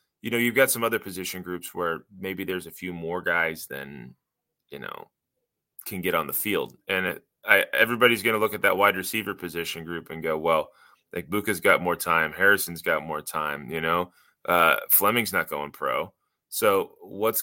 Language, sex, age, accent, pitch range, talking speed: English, male, 20-39, American, 85-110 Hz, 190 wpm